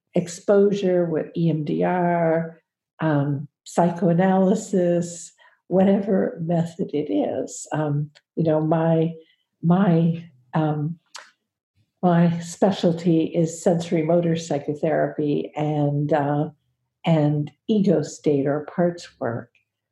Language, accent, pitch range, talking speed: English, American, 155-185 Hz, 85 wpm